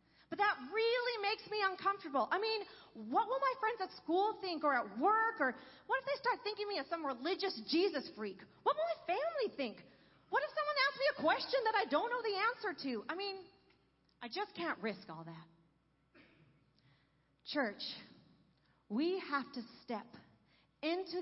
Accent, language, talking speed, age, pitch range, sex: American, English, 180 wpm, 40-59, 220-360 Hz, female